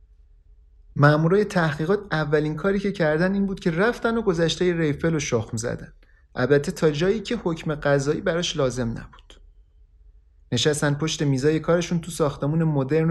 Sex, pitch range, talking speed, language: male, 115-160 Hz, 145 wpm, Persian